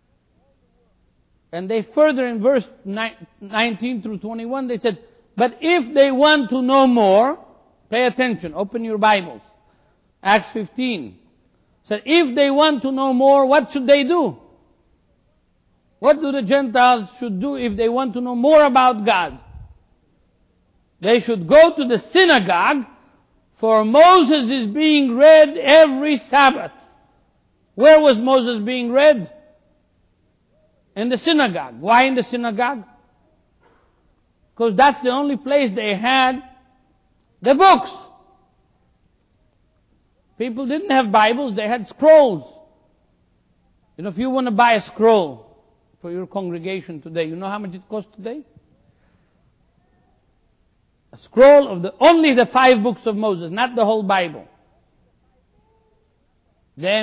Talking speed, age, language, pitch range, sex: 130 wpm, 60-79, English, 215-280 Hz, male